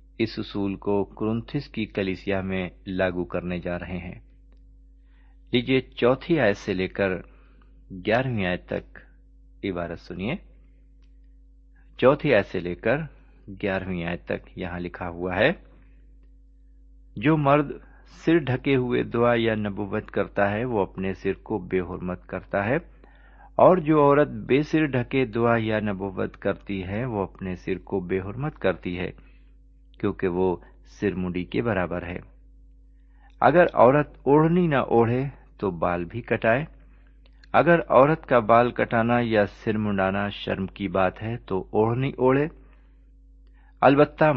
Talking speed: 140 wpm